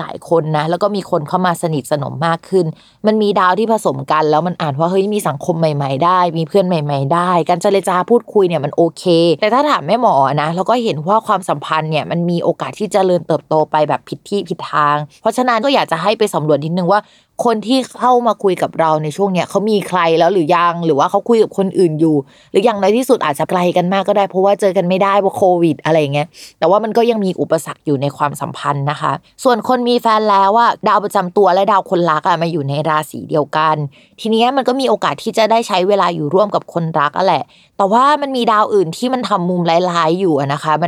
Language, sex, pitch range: Thai, female, 160-215 Hz